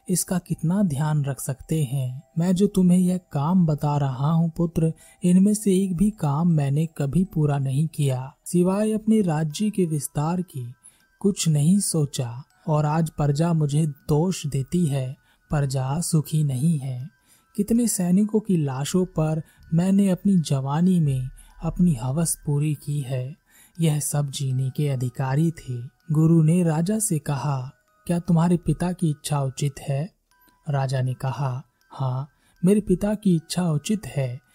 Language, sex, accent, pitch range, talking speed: Hindi, male, native, 140-180 Hz, 150 wpm